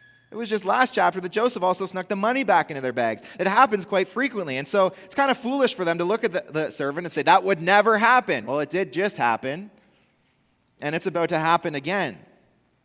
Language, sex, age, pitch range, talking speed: English, male, 30-49, 130-195 Hz, 235 wpm